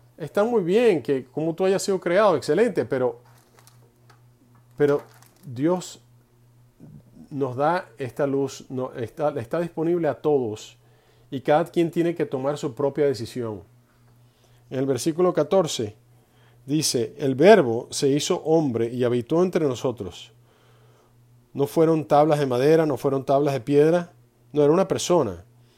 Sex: male